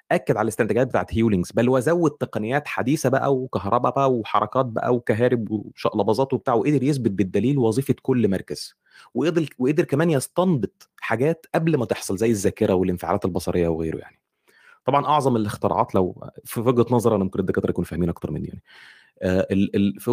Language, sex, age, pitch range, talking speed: Arabic, male, 30-49, 105-140 Hz, 155 wpm